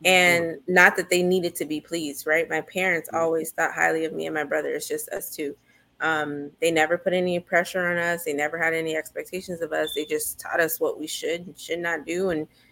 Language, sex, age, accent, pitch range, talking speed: English, female, 20-39, American, 150-180 Hz, 235 wpm